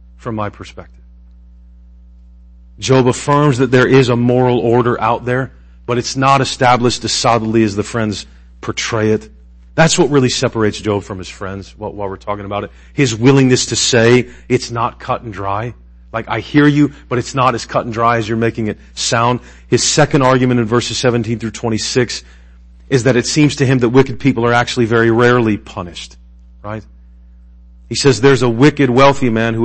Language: English